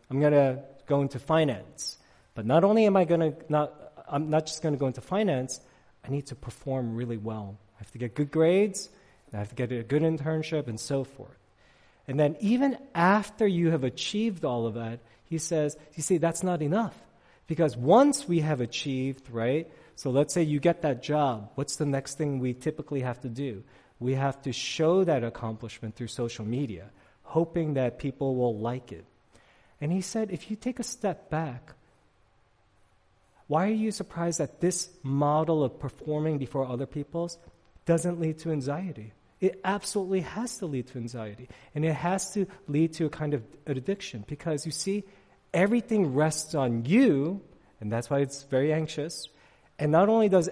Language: English